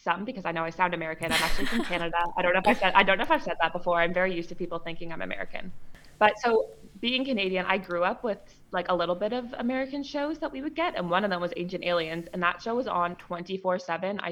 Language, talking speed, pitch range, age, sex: English, 275 wpm, 170-195 Hz, 20-39, female